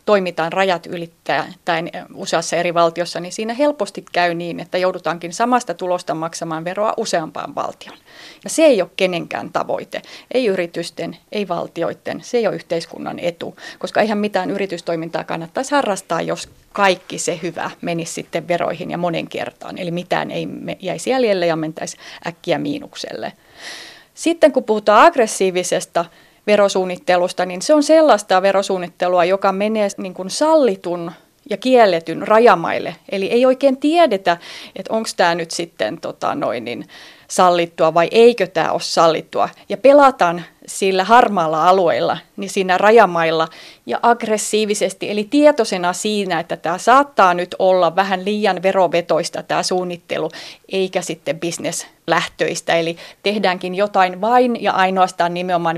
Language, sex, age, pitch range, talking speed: Finnish, female, 30-49, 170-215 Hz, 135 wpm